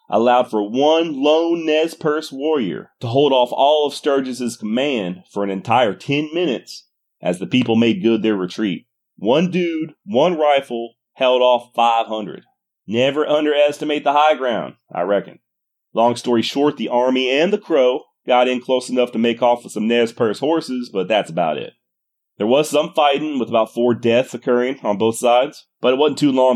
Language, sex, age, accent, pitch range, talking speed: English, male, 30-49, American, 105-145 Hz, 185 wpm